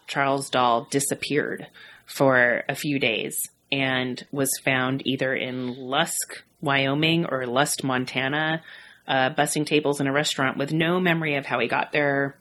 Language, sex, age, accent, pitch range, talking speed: English, female, 30-49, American, 135-180 Hz, 150 wpm